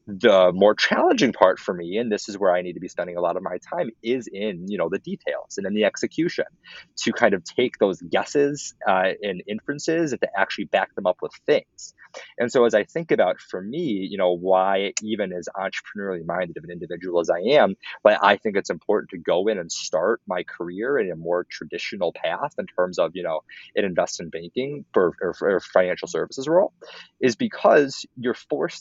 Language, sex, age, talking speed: English, male, 30-49, 215 wpm